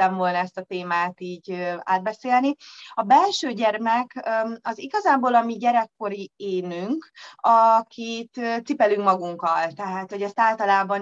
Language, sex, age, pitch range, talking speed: Hungarian, female, 20-39, 180-225 Hz, 120 wpm